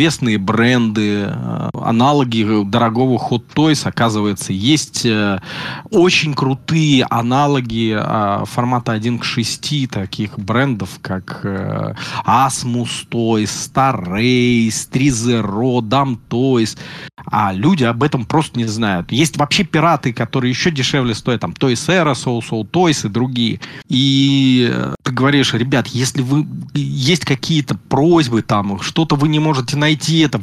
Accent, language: native, Russian